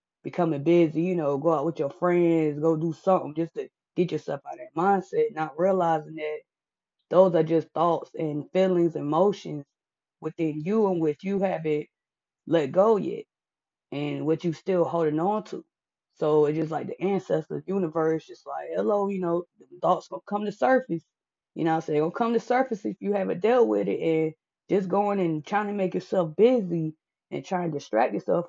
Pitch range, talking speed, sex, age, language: 160-190 Hz, 195 wpm, female, 20-39, English